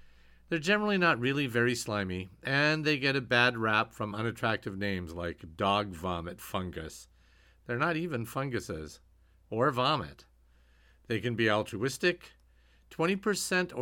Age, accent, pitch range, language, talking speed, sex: 50-69, American, 85-140 Hz, English, 130 wpm, male